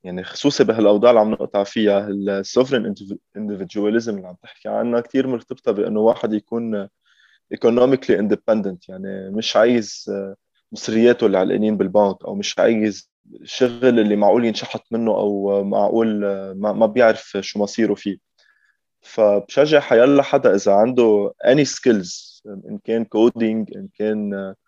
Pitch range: 100-120 Hz